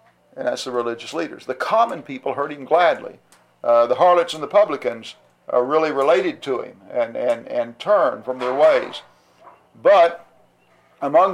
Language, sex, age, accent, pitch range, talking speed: English, male, 50-69, American, 130-170 Hz, 165 wpm